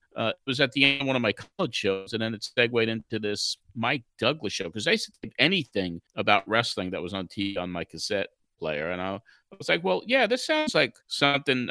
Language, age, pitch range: English, 50-69, 105-140 Hz